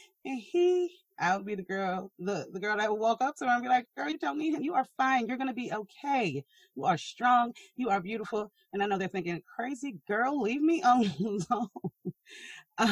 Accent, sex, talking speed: American, female, 225 wpm